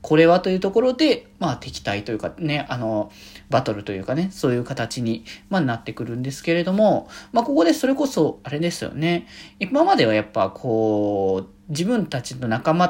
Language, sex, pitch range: Japanese, male, 125-185 Hz